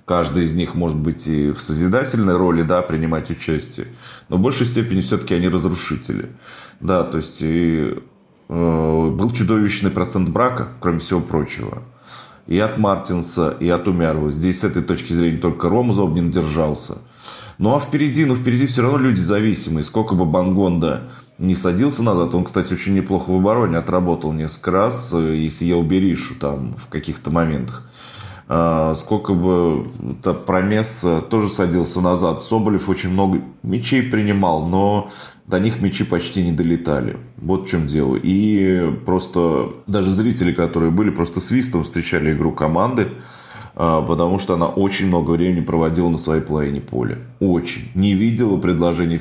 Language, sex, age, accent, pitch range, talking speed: Russian, male, 30-49, native, 80-95 Hz, 155 wpm